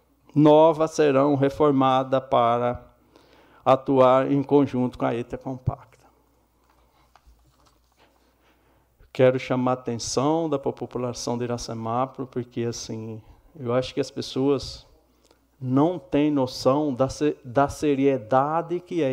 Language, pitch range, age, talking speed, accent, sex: Portuguese, 100-160 Hz, 60-79, 100 wpm, Brazilian, male